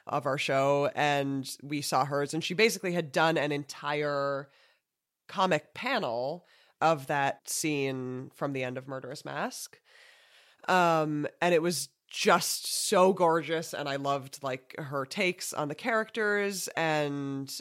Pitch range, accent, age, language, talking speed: 140-175 Hz, American, 20-39, English, 145 wpm